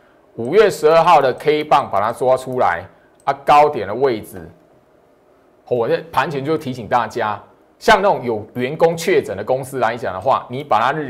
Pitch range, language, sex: 130-185 Hz, Chinese, male